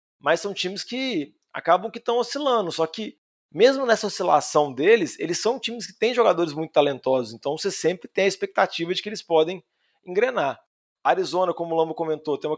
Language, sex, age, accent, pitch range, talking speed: Portuguese, male, 20-39, Brazilian, 145-190 Hz, 190 wpm